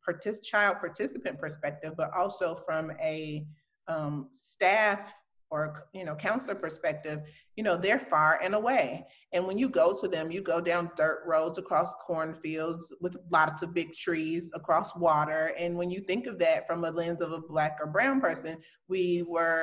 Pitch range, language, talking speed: 165-210 Hz, English, 175 wpm